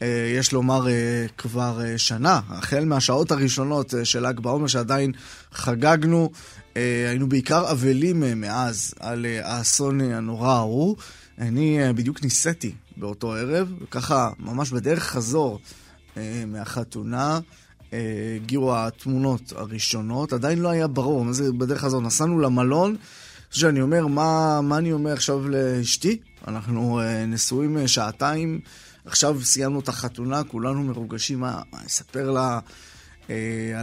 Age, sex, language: 20-39, male, Hebrew